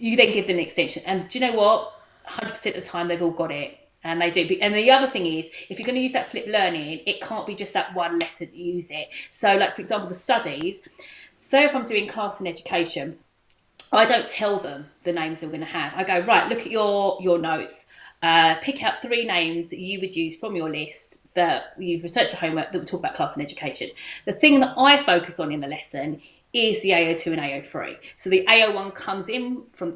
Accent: British